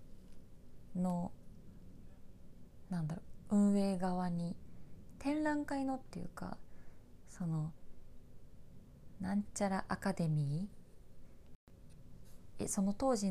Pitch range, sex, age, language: 165-230 Hz, female, 20-39, Japanese